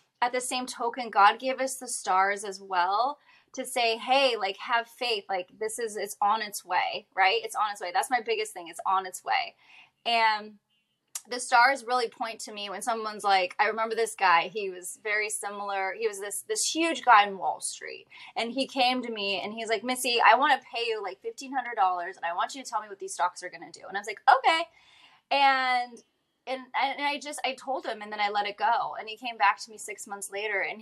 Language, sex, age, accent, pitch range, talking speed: English, female, 20-39, American, 195-255 Hz, 240 wpm